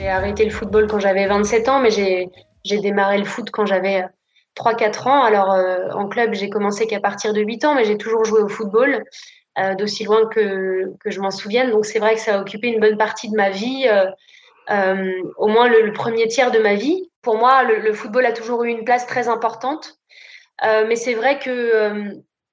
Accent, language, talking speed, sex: French, French, 225 wpm, female